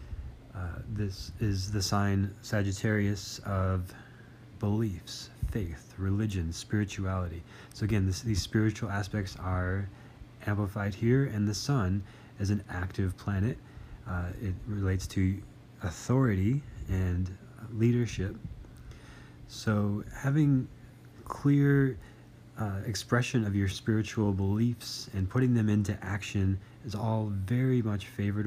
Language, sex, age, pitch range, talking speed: English, male, 30-49, 95-115 Hz, 110 wpm